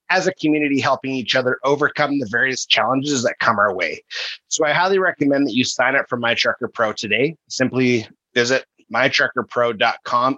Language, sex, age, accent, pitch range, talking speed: English, male, 30-49, American, 120-150 Hz, 170 wpm